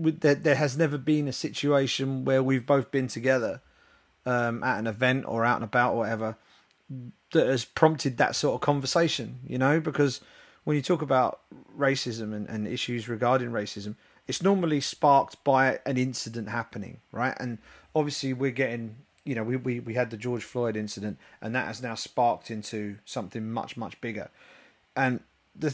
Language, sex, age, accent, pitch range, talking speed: English, male, 30-49, British, 115-150 Hz, 175 wpm